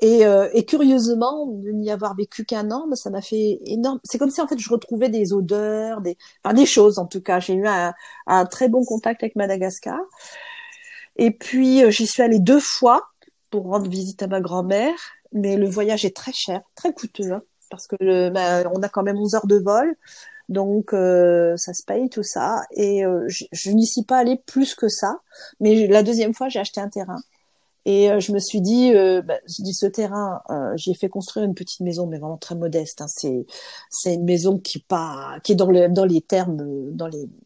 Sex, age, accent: female, 40-59, French